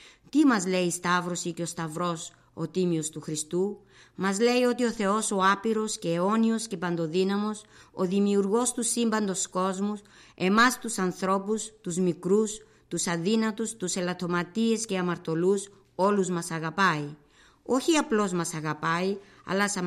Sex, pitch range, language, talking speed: female, 175-215 Hz, Greek, 140 wpm